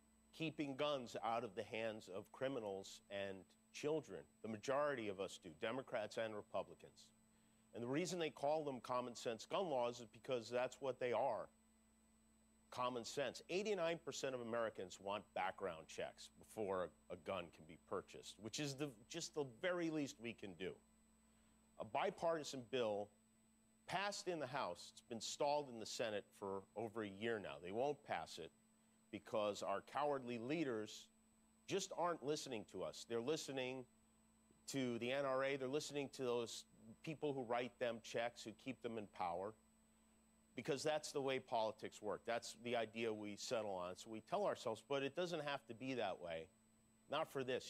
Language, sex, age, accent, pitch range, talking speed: English, male, 50-69, American, 110-140 Hz, 170 wpm